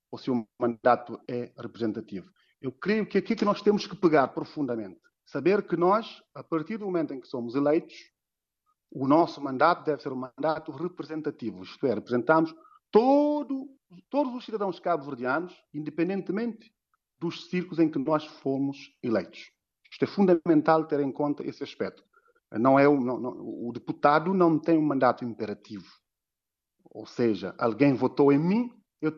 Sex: male